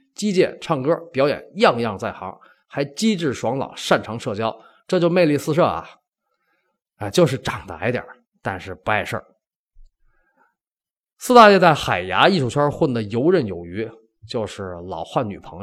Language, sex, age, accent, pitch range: Chinese, male, 20-39, native, 120-185 Hz